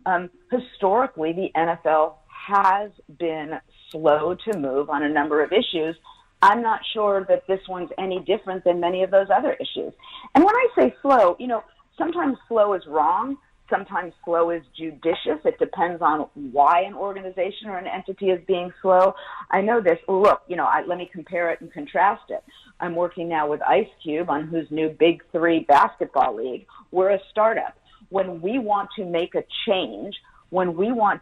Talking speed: 185 wpm